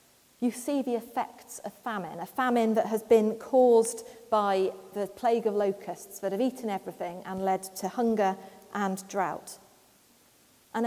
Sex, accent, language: female, British, English